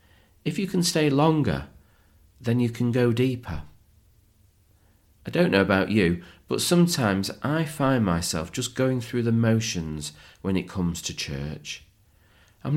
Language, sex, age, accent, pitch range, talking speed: English, male, 40-59, British, 90-130 Hz, 145 wpm